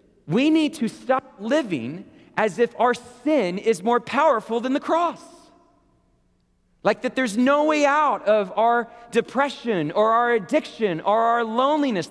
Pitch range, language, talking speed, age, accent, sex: 205-290 Hz, English, 150 wpm, 40-59, American, male